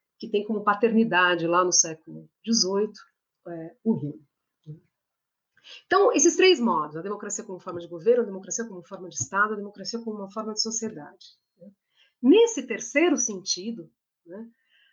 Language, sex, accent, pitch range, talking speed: Portuguese, female, Brazilian, 180-280 Hz, 145 wpm